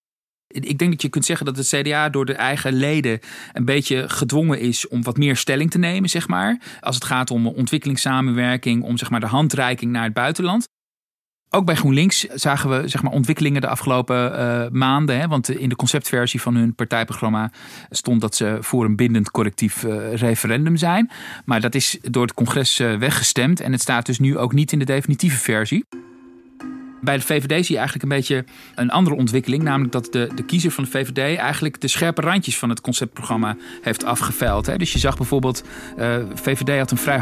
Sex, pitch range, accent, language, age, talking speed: male, 120-150 Hz, Dutch, Dutch, 40-59, 200 wpm